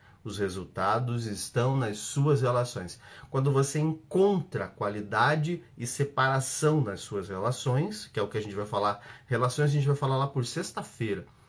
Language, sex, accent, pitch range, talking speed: Portuguese, male, Brazilian, 120-150 Hz, 160 wpm